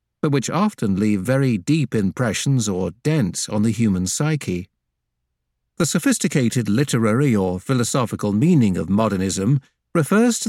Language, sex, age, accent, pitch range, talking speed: English, male, 50-69, British, 95-145 Hz, 130 wpm